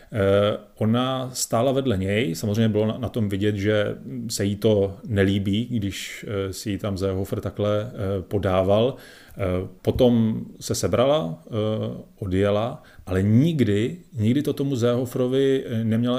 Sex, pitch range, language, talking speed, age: male, 100-115 Hz, Czech, 115 wpm, 40-59